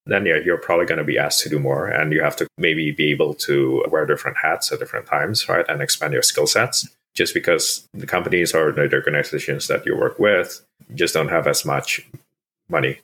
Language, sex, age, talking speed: English, male, 30-49, 220 wpm